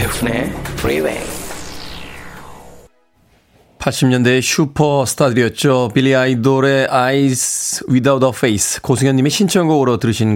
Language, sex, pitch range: Korean, male, 110-145 Hz